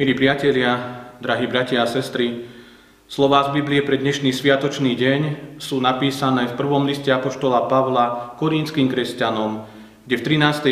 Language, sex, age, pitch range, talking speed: Slovak, male, 40-59, 110-140 Hz, 140 wpm